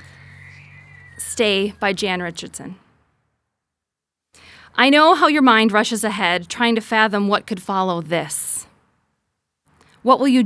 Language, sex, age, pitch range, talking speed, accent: English, female, 30-49, 205-250 Hz, 115 wpm, American